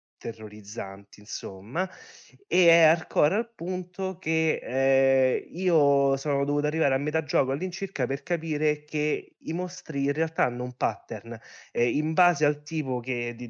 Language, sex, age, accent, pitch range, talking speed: Italian, male, 20-39, native, 120-150 Hz, 145 wpm